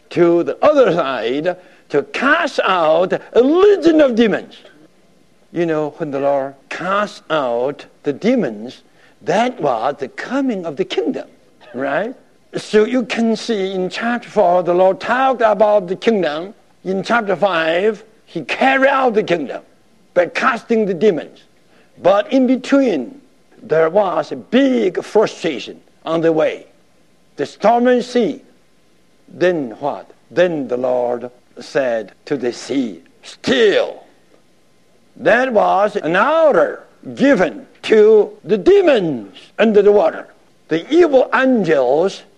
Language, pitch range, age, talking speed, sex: English, 175-260 Hz, 60-79, 130 wpm, male